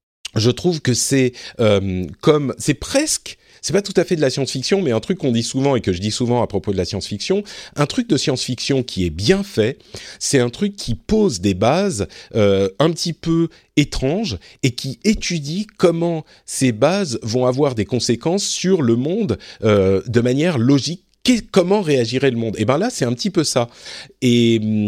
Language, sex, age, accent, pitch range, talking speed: French, male, 40-59, French, 105-140 Hz, 200 wpm